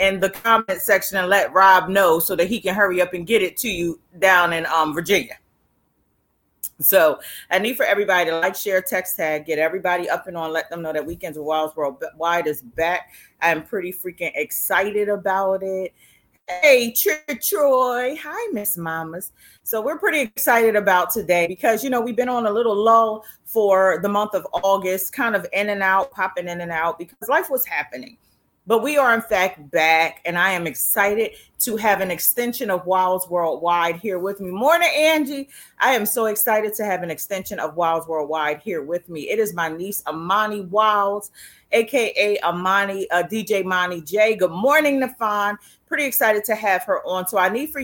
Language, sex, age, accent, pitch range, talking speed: English, female, 30-49, American, 175-225 Hz, 195 wpm